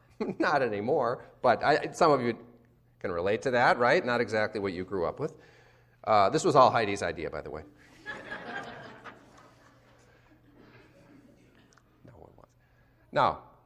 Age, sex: 40-59, male